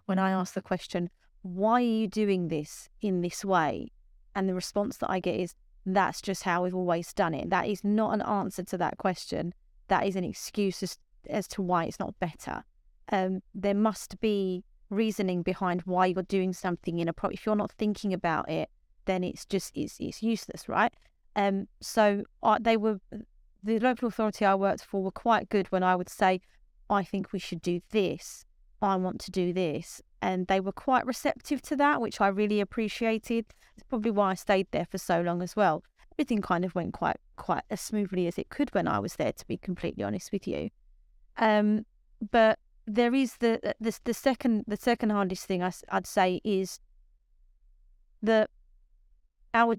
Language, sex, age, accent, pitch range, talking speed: English, female, 30-49, British, 185-220 Hz, 195 wpm